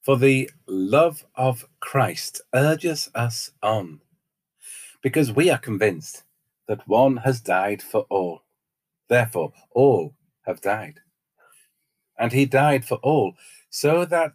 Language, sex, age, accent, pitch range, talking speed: English, male, 50-69, British, 115-150 Hz, 120 wpm